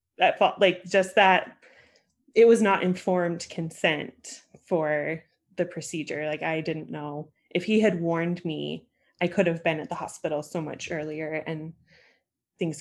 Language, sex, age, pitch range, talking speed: English, female, 20-39, 175-215 Hz, 160 wpm